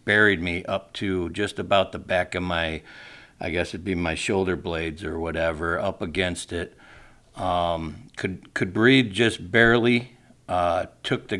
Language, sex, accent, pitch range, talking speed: English, male, American, 85-105 Hz, 165 wpm